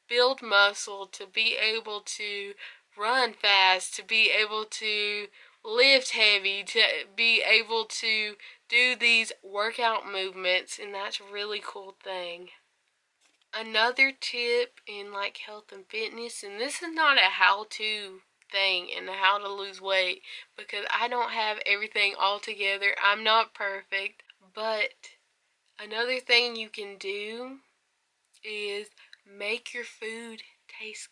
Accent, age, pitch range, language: American, 20-39, 200-255 Hz, English